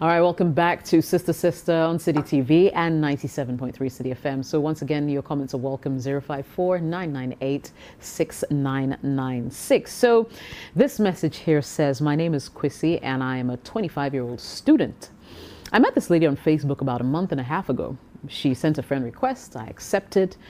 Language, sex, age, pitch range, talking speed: English, female, 30-49, 135-180 Hz, 180 wpm